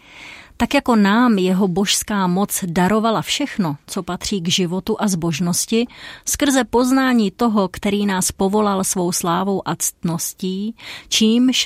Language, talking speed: Czech, 130 wpm